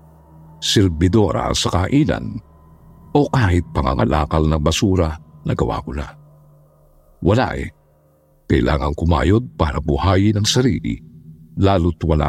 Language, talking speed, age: Filipino, 105 wpm, 50-69